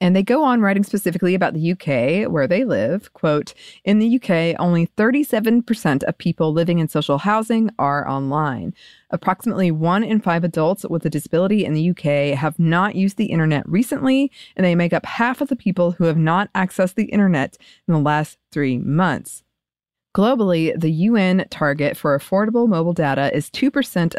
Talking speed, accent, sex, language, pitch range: 180 wpm, American, female, English, 160-215 Hz